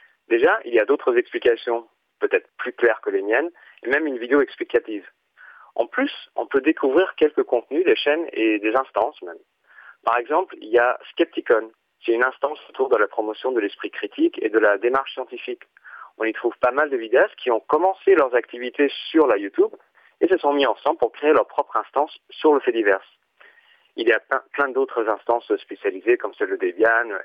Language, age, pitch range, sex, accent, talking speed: French, 40-59, 330-440 Hz, male, French, 205 wpm